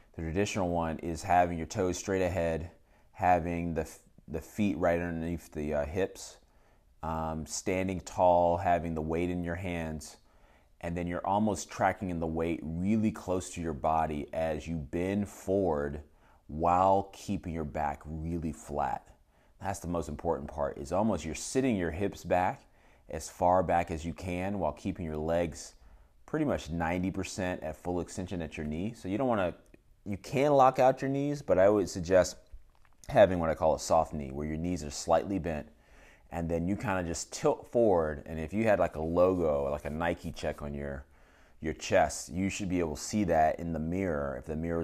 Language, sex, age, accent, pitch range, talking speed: English, male, 30-49, American, 80-95 Hz, 195 wpm